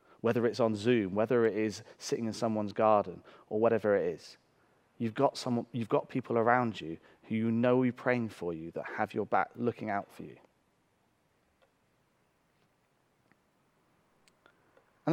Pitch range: 110-150 Hz